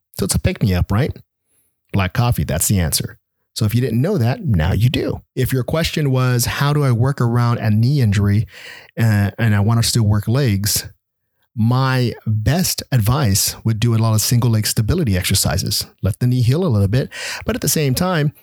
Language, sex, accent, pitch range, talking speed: English, male, American, 105-130 Hz, 200 wpm